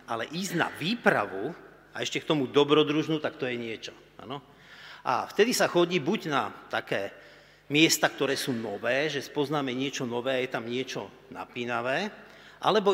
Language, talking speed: Slovak, 160 wpm